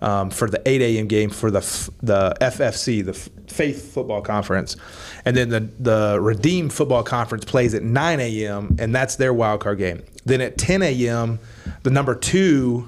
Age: 30-49